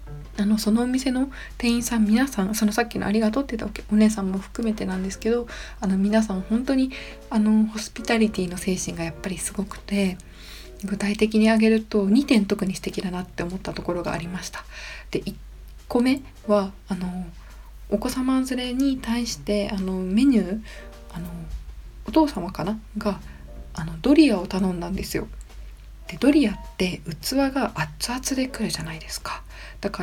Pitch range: 190-245 Hz